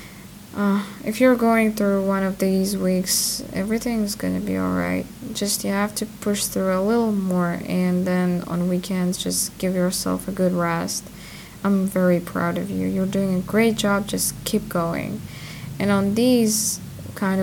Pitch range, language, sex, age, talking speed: 185-215 Hz, English, female, 20-39, 170 wpm